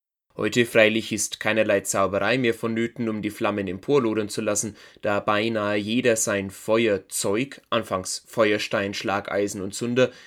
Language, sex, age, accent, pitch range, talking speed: German, male, 20-39, German, 105-130 Hz, 135 wpm